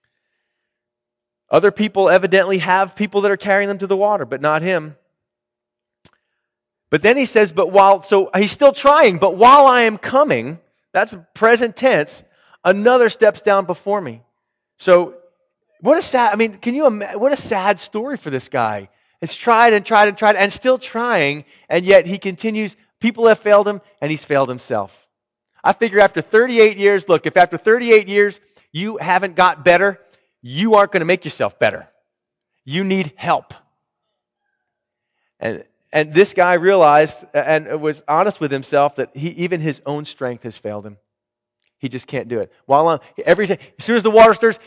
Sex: male